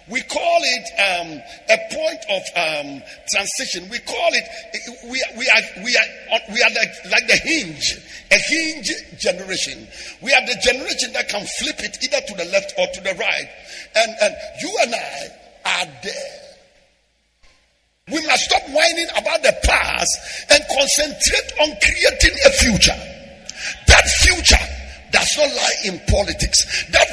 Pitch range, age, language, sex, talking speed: 225-320 Hz, 50-69, English, male, 155 wpm